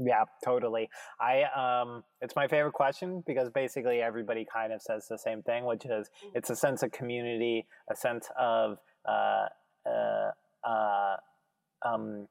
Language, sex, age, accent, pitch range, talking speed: English, male, 20-39, American, 115-130 Hz, 150 wpm